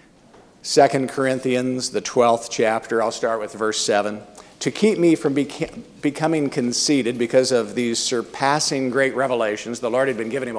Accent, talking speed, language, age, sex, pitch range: American, 165 wpm, English, 50-69, male, 125-175 Hz